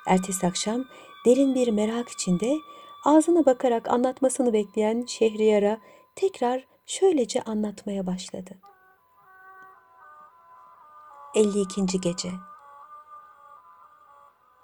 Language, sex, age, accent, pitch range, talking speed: Turkish, female, 50-69, native, 195-320 Hz, 70 wpm